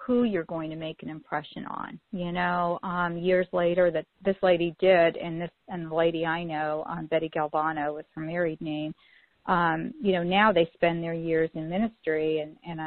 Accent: American